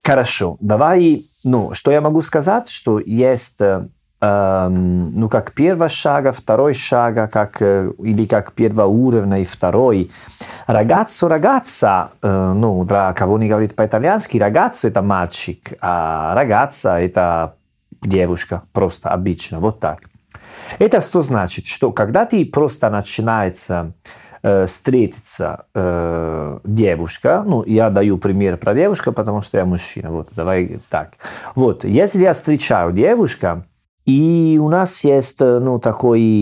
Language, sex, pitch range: Russian, male, 95-150 Hz